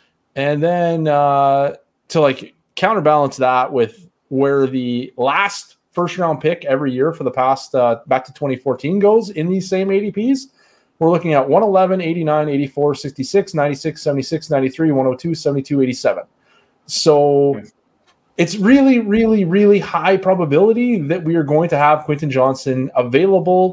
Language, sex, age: English, male, 30-49